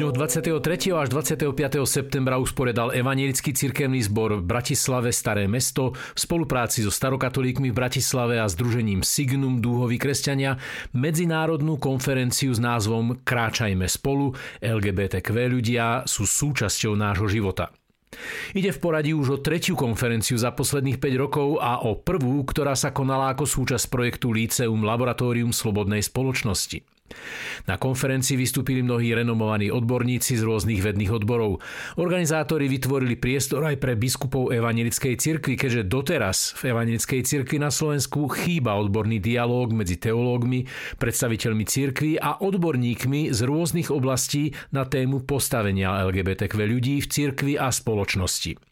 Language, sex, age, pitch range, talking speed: Slovak, male, 50-69, 115-140 Hz, 130 wpm